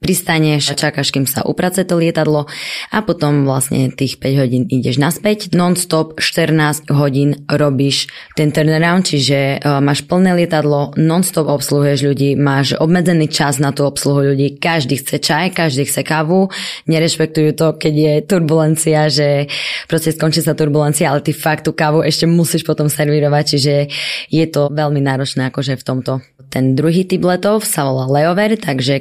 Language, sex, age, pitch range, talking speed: Slovak, female, 20-39, 140-160 Hz, 155 wpm